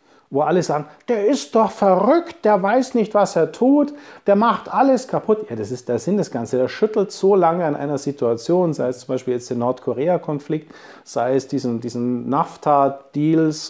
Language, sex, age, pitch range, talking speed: German, male, 40-59, 130-170 Hz, 190 wpm